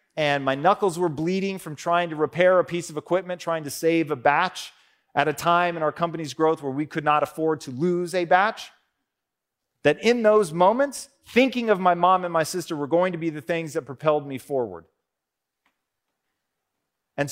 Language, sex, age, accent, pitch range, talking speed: English, male, 30-49, American, 155-210 Hz, 195 wpm